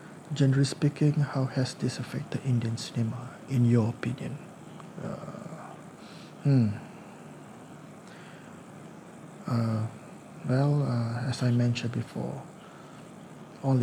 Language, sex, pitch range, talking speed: English, male, 120-140 Hz, 90 wpm